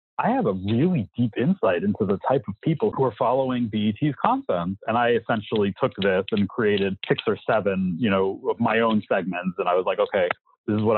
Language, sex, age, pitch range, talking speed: English, male, 30-49, 100-130 Hz, 215 wpm